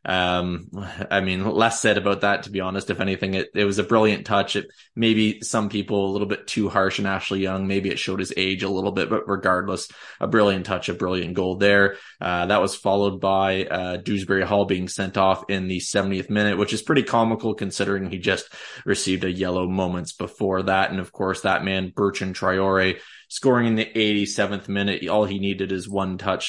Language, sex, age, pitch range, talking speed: English, male, 20-39, 95-105 Hz, 210 wpm